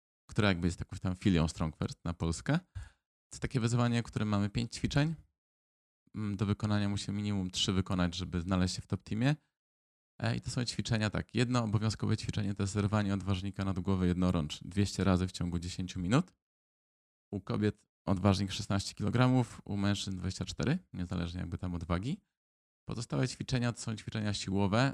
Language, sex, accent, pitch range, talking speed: Polish, male, native, 90-110 Hz, 160 wpm